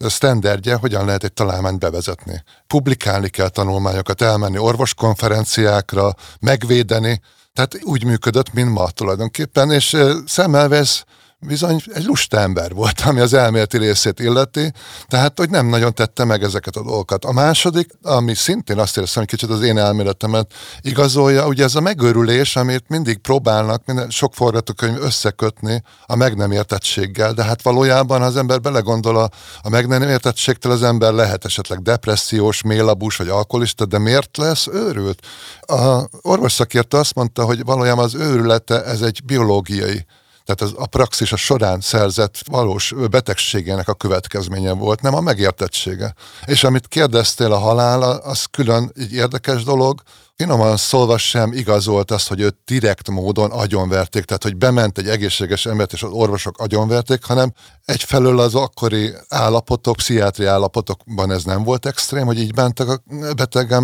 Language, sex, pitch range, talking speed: Hungarian, male, 105-130 Hz, 150 wpm